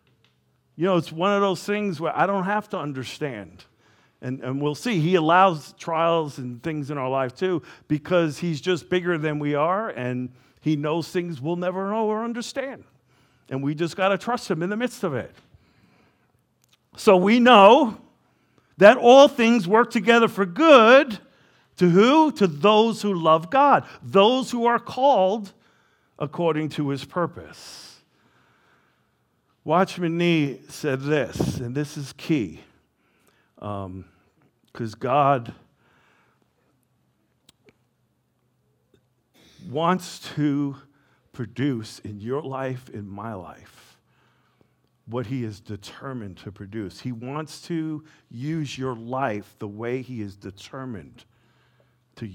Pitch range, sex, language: 125-185 Hz, male, English